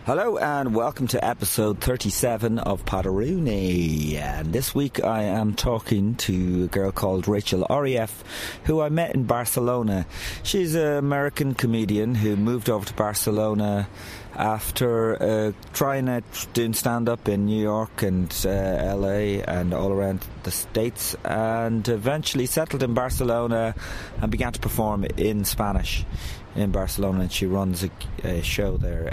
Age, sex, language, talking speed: 30-49, male, English, 145 wpm